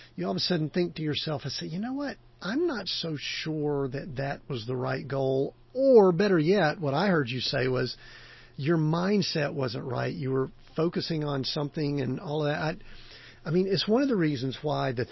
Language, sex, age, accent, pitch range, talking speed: English, male, 50-69, American, 125-155 Hz, 215 wpm